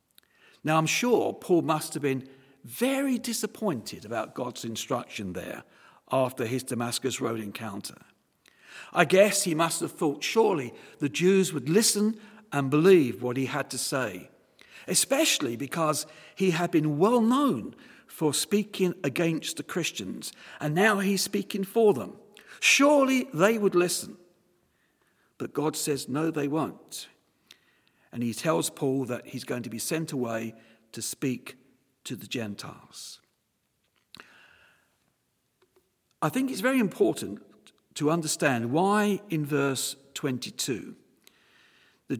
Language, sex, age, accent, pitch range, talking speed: English, male, 50-69, British, 130-195 Hz, 130 wpm